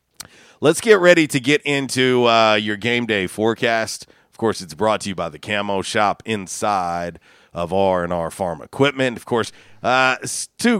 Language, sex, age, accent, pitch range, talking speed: English, male, 40-59, American, 100-140 Hz, 165 wpm